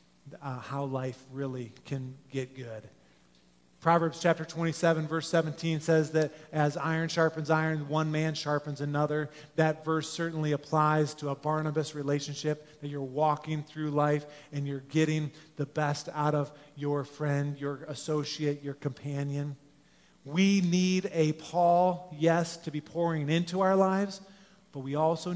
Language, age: English, 30-49